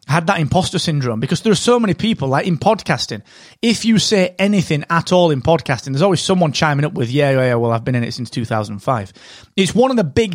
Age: 30-49